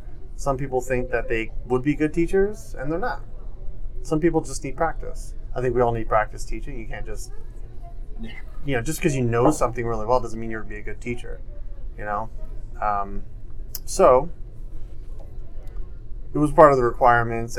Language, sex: English, male